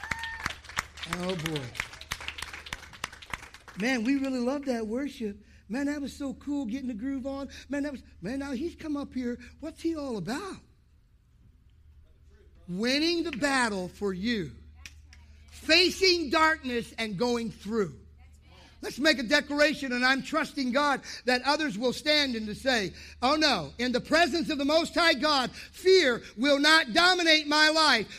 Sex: male